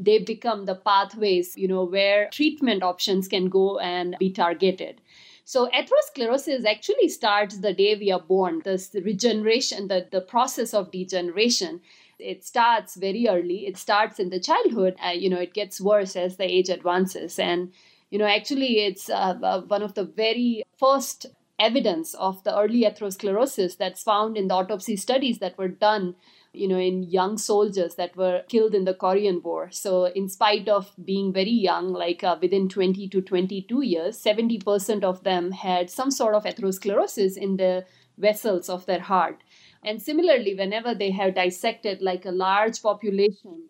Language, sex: English, female